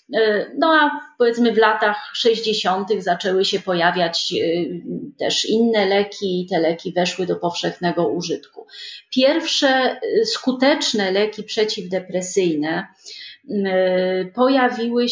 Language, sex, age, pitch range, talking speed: Polish, female, 30-49, 200-255 Hz, 95 wpm